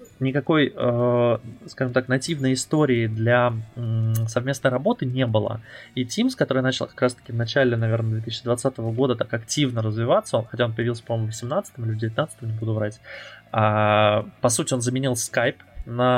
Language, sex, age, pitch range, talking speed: Russian, male, 20-39, 115-130 Hz, 165 wpm